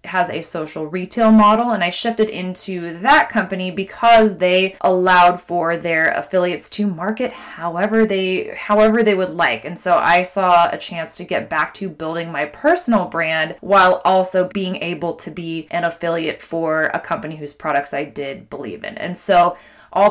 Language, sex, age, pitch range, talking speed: English, female, 20-39, 170-220 Hz, 175 wpm